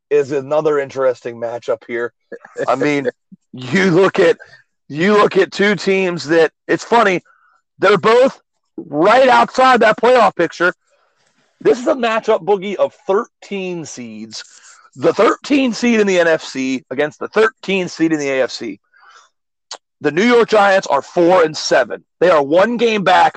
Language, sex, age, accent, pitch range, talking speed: English, male, 40-59, American, 160-240 Hz, 150 wpm